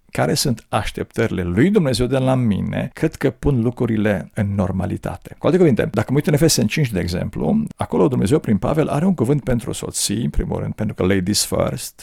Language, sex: Romanian, male